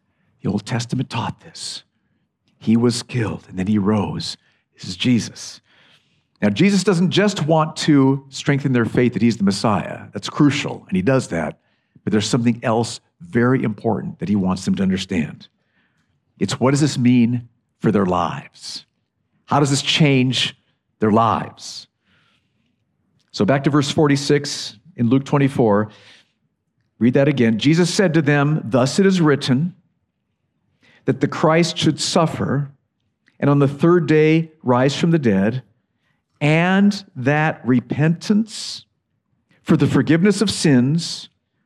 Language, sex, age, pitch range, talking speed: English, male, 50-69, 120-170 Hz, 145 wpm